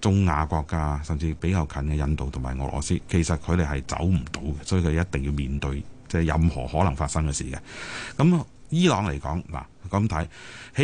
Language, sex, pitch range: Chinese, male, 80-105 Hz